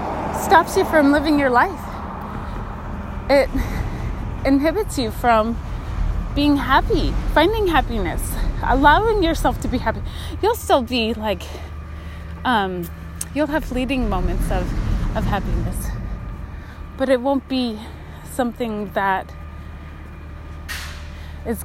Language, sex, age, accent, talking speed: English, female, 20-39, American, 105 wpm